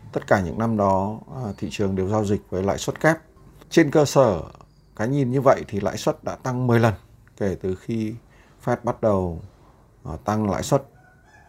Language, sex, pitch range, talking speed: Vietnamese, male, 100-130 Hz, 195 wpm